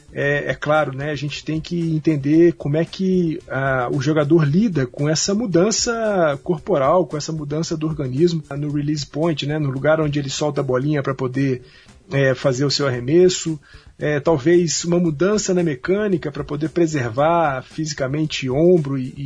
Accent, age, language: Brazilian, 40-59, Portuguese